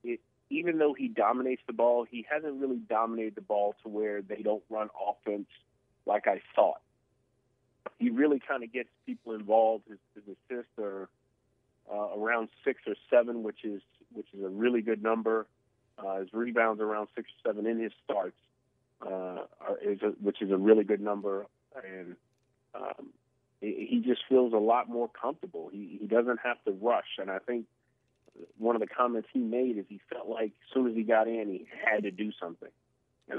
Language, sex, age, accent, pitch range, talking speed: English, male, 30-49, American, 105-125 Hz, 190 wpm